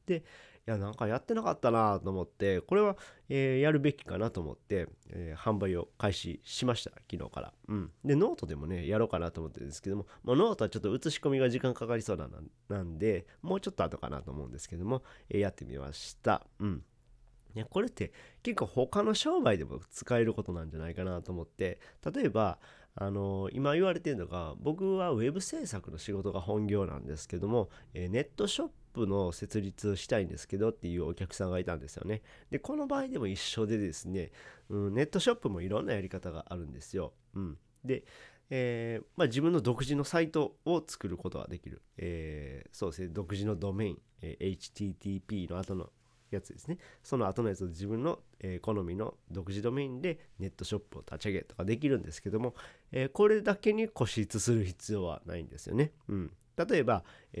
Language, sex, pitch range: Japanese, male, 90-125 Hz